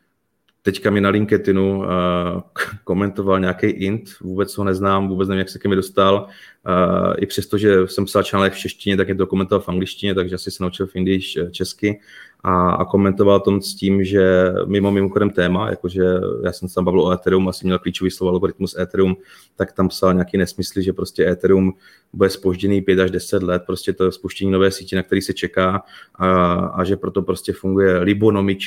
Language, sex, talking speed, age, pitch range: Czech, male, 195 wpm, 30-49, 90-95 Hz